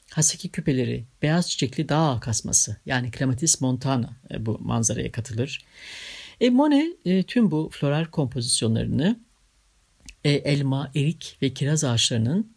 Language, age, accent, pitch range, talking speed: Turkish, 60-79, native, 130-170 Hz, 120 wpm